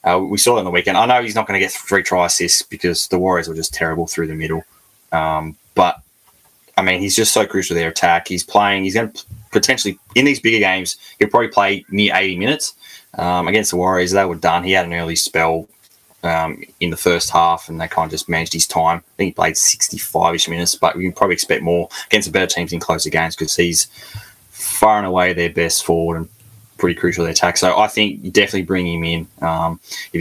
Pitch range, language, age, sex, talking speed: 85-105 Hz, English, 20-39, male, 235 wpm